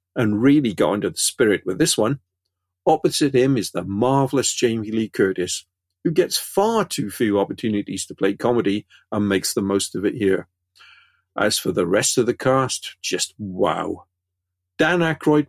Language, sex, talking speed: English, male, 170 wpm